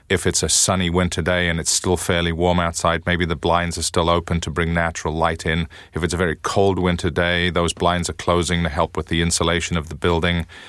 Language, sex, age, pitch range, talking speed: English, male, 30-49, 85-90 Hz, 235 wpm